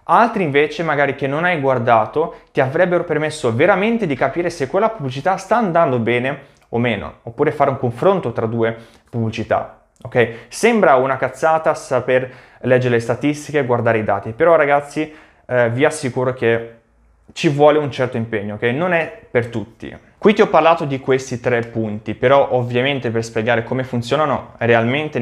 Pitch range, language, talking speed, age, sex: 115-145 Hz, Italian, 170 wpm, 20-39, male